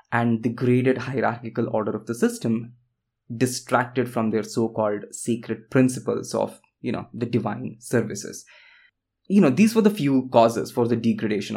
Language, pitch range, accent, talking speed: English, 115-130 Hz, Indian, 155 wpm